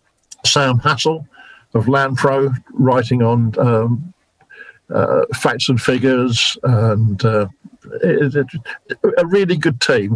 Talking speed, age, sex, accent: 100 wpm, 50-69, male, British